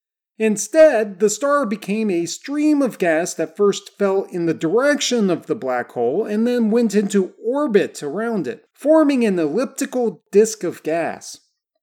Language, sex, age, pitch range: English, male, 40-59, 185-265 Hz